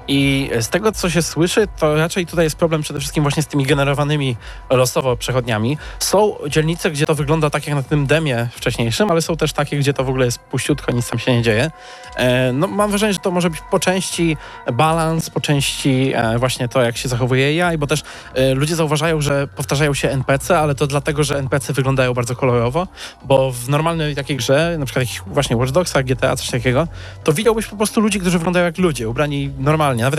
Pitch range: 125-160 Hz